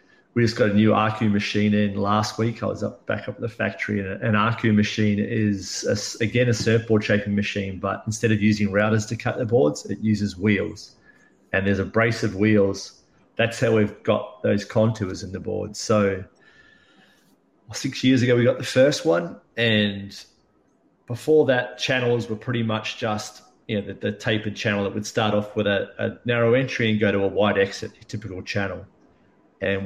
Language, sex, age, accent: English, male, 30-49, Australian